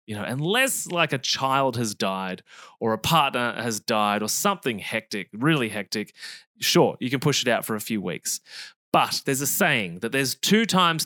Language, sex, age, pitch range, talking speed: English, male, 20-39, 120-170 Hz, 195 wpm